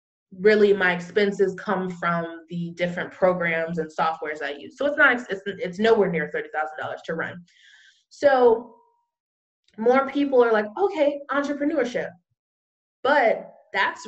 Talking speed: 130 wpm